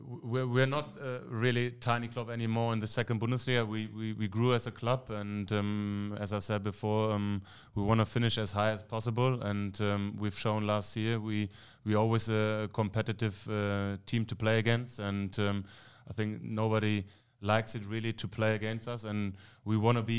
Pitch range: 100-115 Hz